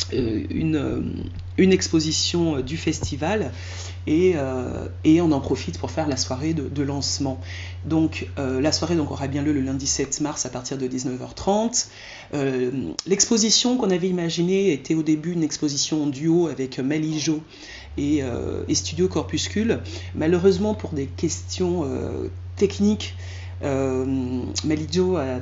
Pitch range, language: 115-160 Hz, French